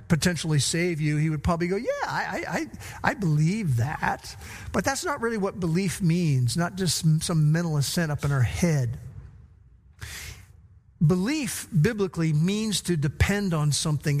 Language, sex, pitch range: English, male, 150-195 Hz